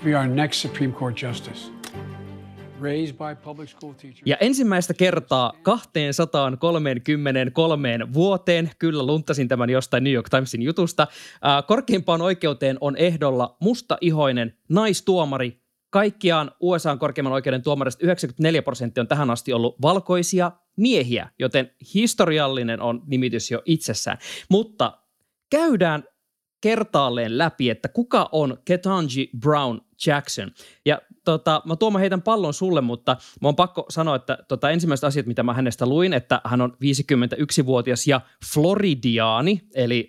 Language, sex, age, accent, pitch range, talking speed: Finnish, male, 20-39, native, 125-170 Hz, 110 wpm